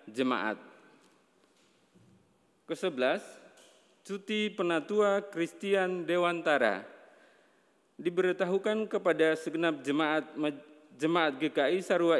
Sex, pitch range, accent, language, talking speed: male, 150-180 Hz, native, Indonesian, 60 wpm